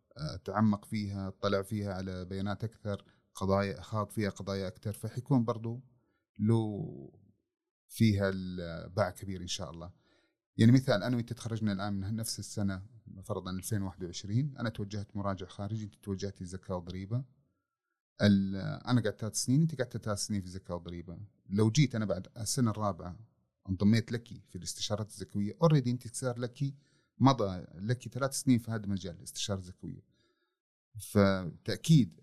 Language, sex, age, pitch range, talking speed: English, male, 30-49, 100-120 Hz, 135 wpm